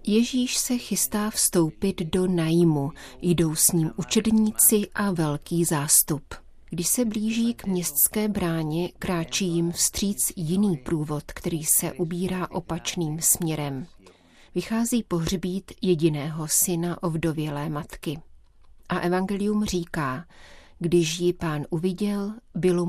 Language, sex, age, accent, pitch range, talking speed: Czech, female, 40-59, native, 160-185 Hz, 115 wpm